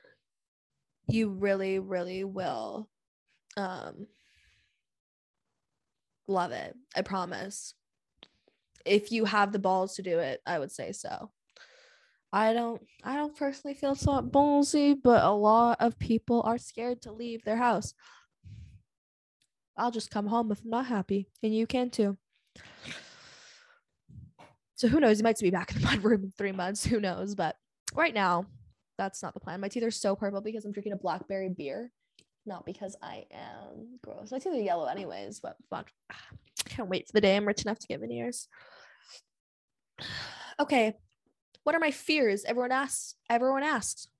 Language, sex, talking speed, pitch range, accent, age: English, female, 160 wpm, 195-260 Hz, American, 10-29